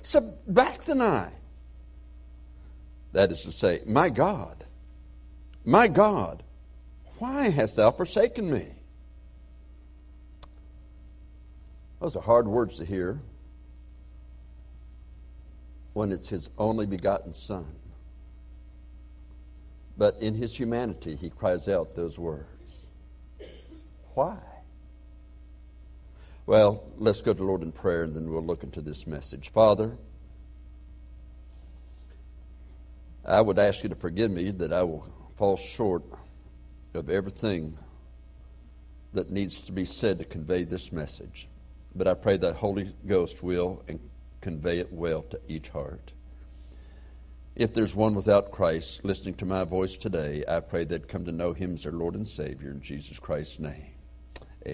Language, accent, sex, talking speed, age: English, American, male, 130 wpm, 60-79